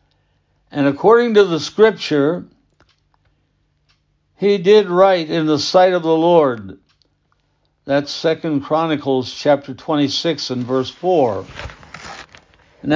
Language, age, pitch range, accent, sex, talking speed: English, 60-79, 145-175 Hz, American, male, 105 wpm